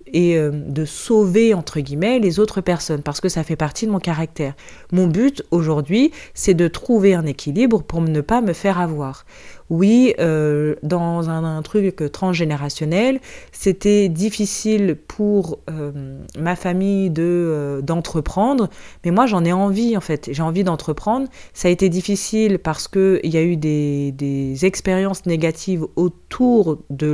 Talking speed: 160 wpm